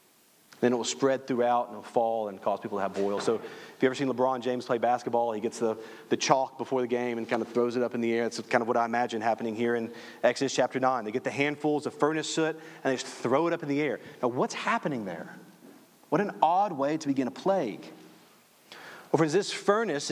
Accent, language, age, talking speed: American, English, 40-59, 250 wpm